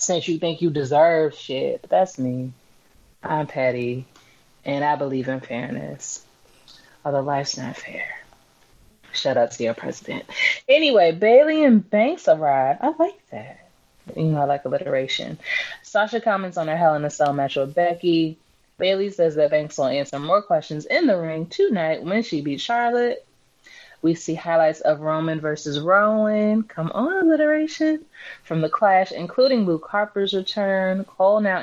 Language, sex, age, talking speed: English, female, 20-39, 160 wpm